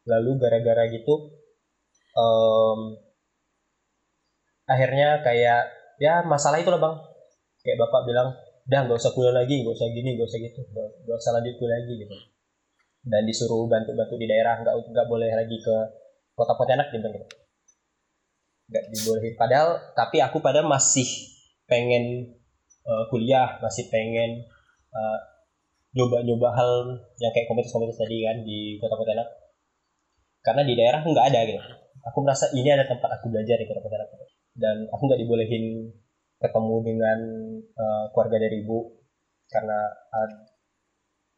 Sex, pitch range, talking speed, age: male, 110-130 Hz, 135 wpm, 20-39